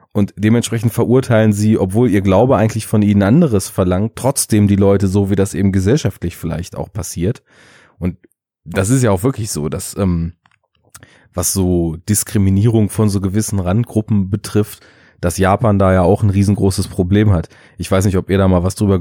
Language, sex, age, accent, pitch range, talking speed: German, male, 30-49, German, 95-115 Hz, 185 wpm